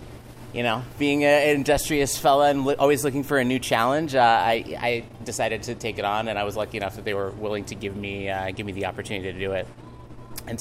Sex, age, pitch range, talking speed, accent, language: male, 30-49, 100-115 Hz, 240 wpm, American, English